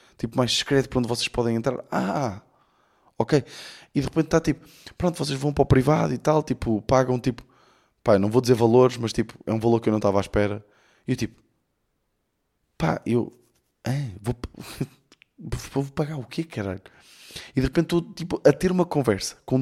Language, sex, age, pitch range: Portuguese, male, 20-39, 115-145 Hz